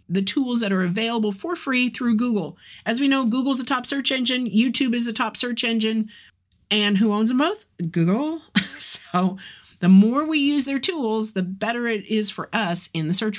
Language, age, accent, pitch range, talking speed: English, 40-59, American, 200-265 Hz, 200 wpm